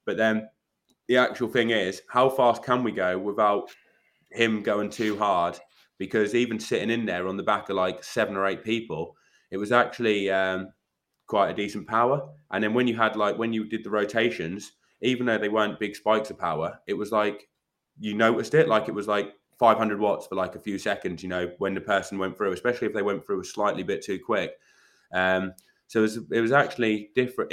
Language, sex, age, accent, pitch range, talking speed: English, male, 20-39, British, 100-115 Hz, 215 wpm